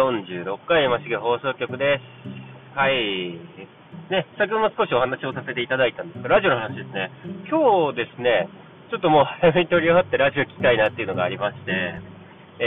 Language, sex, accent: Japanese, male, native